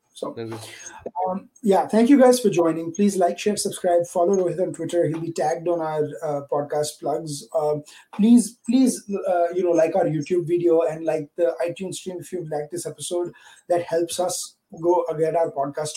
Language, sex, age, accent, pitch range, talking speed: English, male, 30-49, Indian, 150-180 Hz, 190 wpm